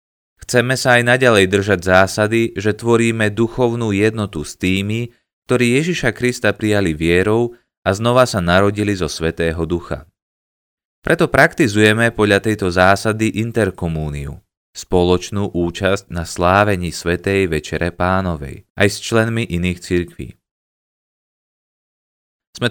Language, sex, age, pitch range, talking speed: Slovak, male, 20-39, 85-115 Hz, 115 wpm